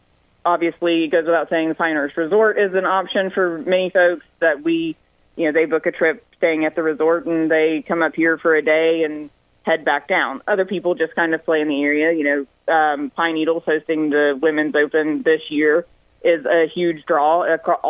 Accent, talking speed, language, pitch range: American, 210 wpm, English, 155-175 Hz